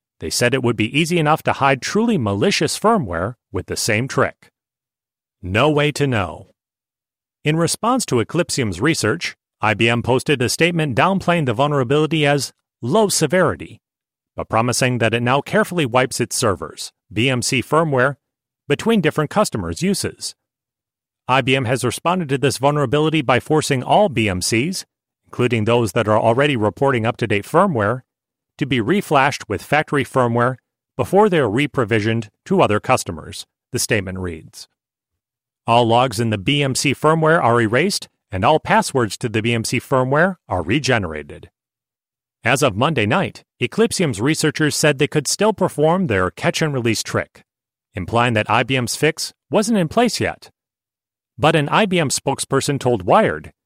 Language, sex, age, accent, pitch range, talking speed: English, male, 40-59, American, 115-155 Hz, 145 wpm